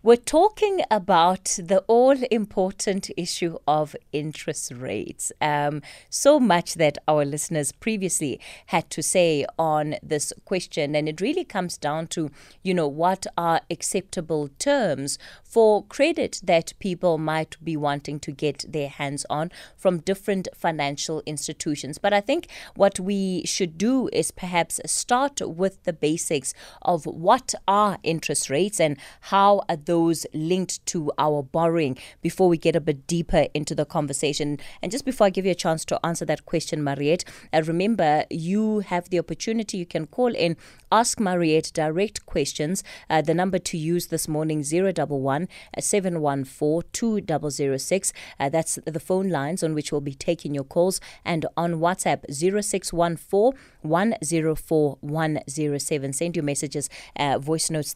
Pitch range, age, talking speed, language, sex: 150-195 Hz, 20-39, 145 wpm, English, female